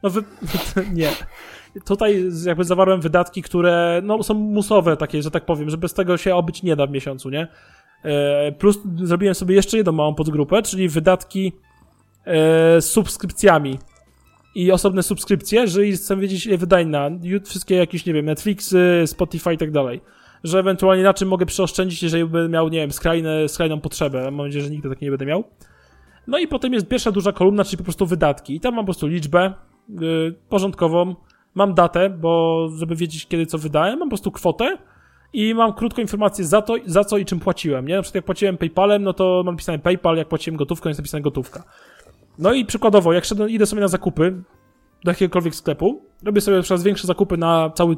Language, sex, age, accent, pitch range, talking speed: Polish, male, 20-39, native, 160-200 Hz, 195 wpm